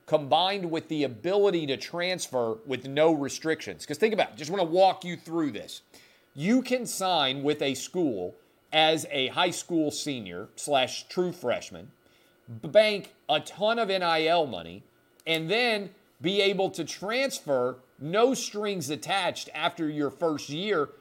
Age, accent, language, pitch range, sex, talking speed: 40-59, American, English, 140-195 Hz, male, 150 wpm